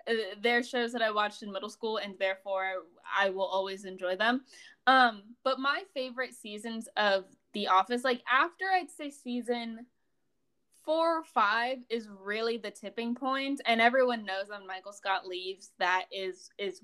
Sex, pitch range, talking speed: female, 190-240 Hz, 170 wpm